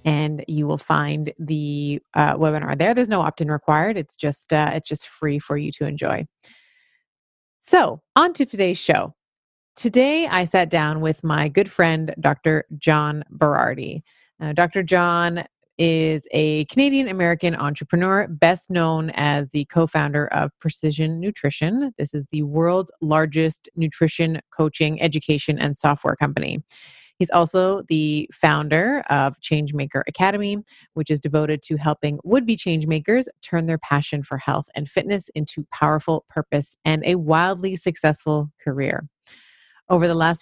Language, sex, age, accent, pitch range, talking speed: English, female, 30-49, American, 150-175 Hz, 145 wpm